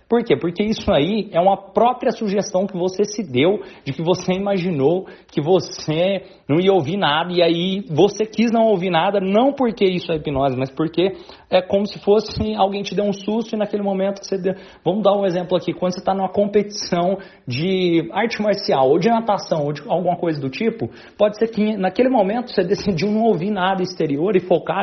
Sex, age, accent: male, 40-59, Brazilian